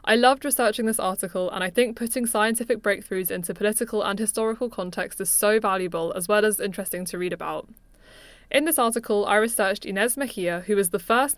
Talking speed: 195 wpm